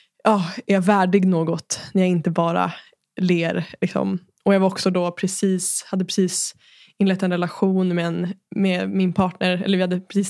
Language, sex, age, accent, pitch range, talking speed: Swedish, female, 20-39, native, 175-195 Hz, 180 wpm